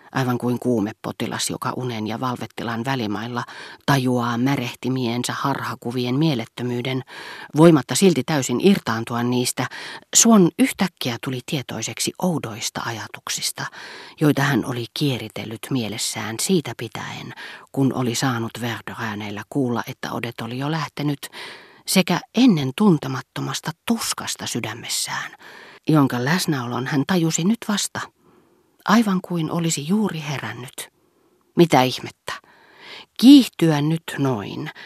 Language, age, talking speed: Finnish, 40-59, 105 wpm